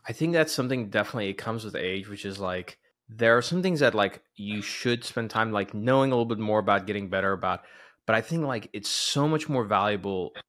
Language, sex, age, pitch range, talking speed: English, male, 20-39, 105-125 Hz, 235 wpm